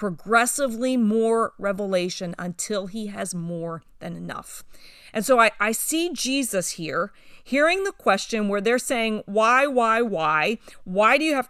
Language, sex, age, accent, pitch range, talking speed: English, female, 40-59, American, 205-290 Hz, 150 wpm